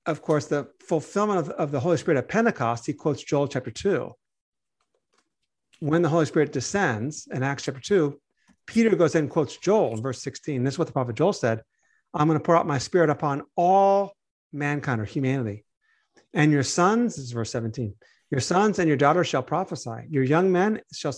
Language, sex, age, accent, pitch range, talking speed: English, male, 50-69, American, 135-175 Hz, 200 wpm